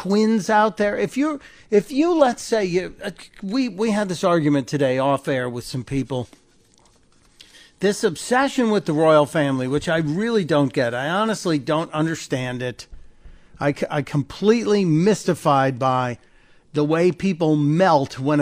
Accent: American